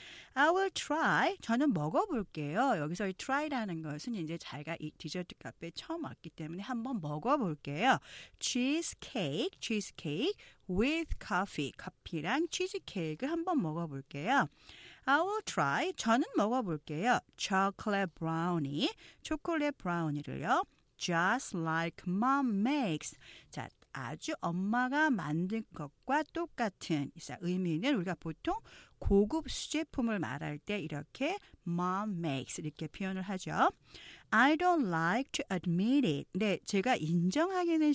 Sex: female